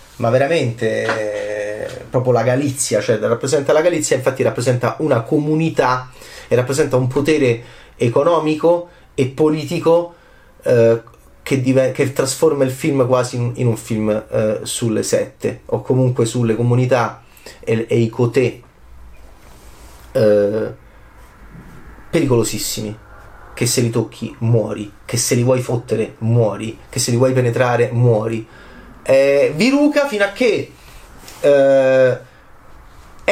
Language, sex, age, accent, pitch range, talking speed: Italian, male, 30-49, native, 115-155 Hz, 115 wpm